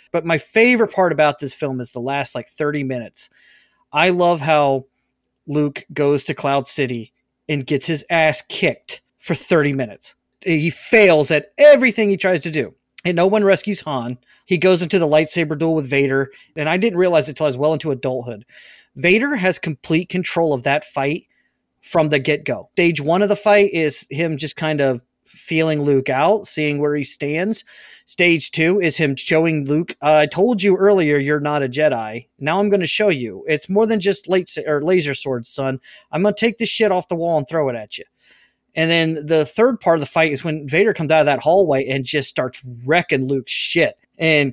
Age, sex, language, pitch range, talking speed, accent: 30-49, male, English, 145-185 Hz, 210 wpm, American